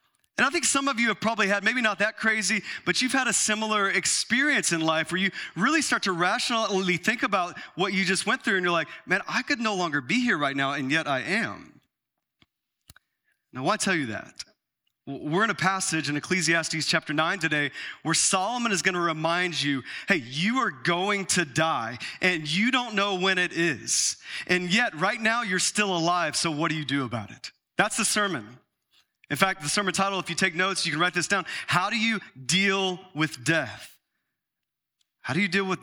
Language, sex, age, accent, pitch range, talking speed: English, male, 30-49, American, 145-190 Hz, 210 wpm